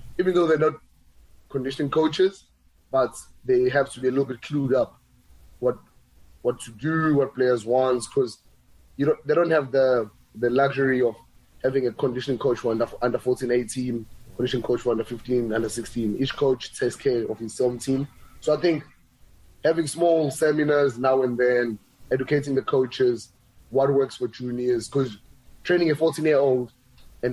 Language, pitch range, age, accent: English, 120-140 Hz, 20-39, South African